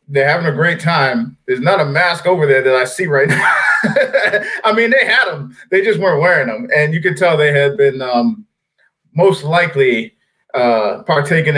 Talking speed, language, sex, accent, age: 195 wpm, English, male, American, 20-39